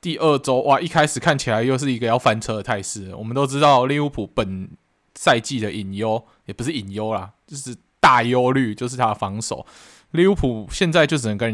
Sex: male